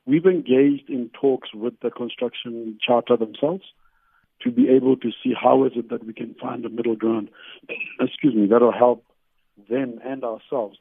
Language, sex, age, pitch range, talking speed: English, male, 50-69, 110-125 Hz, 180 wpm